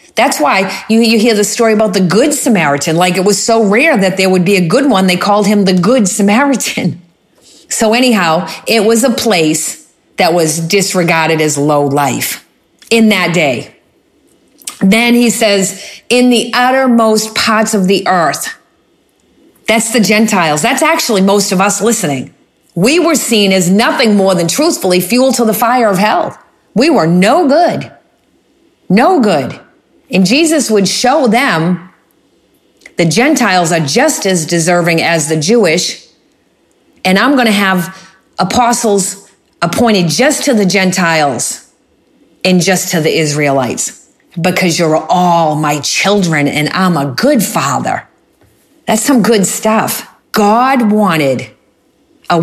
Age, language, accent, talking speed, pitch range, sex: 40-59, English, American, 150 wpm, 175-235 Hz, female